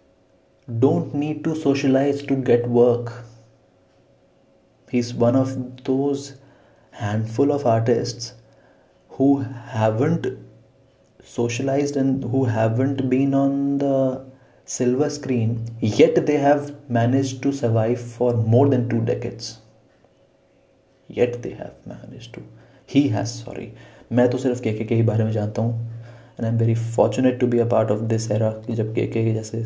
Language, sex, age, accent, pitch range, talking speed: Hindi, male, 30-49, native, 115-150 Hz, 135 wpm